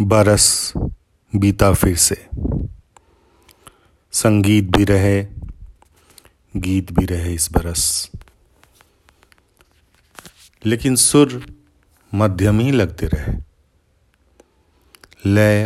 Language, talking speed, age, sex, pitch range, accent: Hindi, 75 wpm, 50-69, male, 85-100 Hz, native